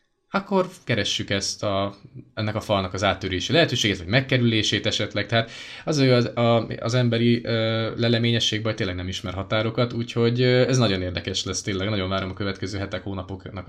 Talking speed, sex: 160 wpm, male